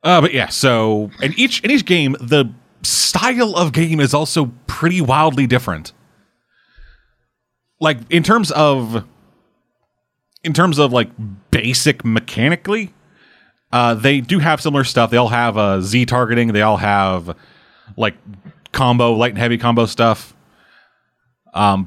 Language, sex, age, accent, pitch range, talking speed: English, male, 30-49, American, 100-130 Hz, 145 wpm